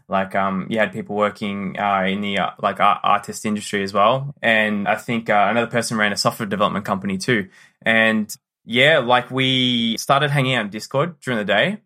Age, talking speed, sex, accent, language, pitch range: 20-39, 195 wpm, male, Australian, English, 105-130 Hz